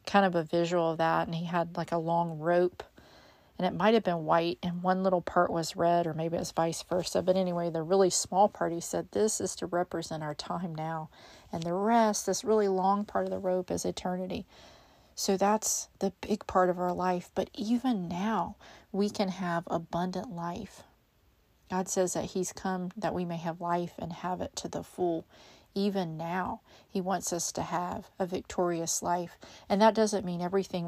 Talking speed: 205 wpm